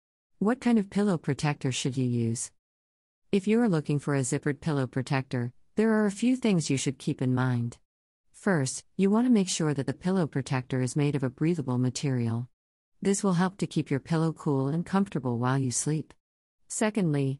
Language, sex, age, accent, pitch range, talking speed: English, female, 50-69, American, 130-170 Hz, 195 wpm